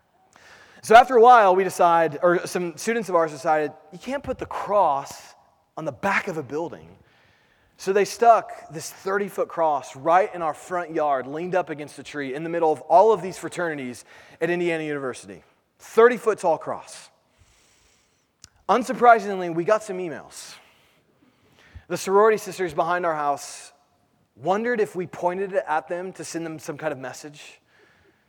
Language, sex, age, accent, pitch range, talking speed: English, male, 30-49, American, 145-190 Hz, 165 wpm